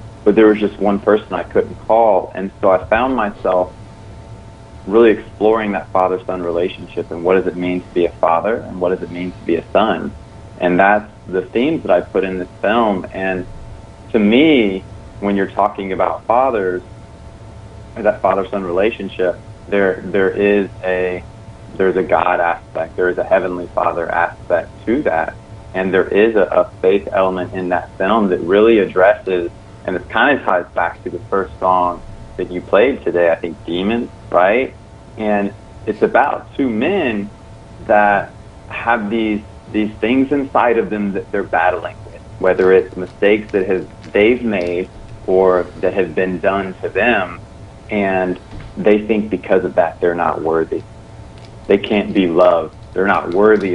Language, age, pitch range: English, 30-49, 90-110 Hz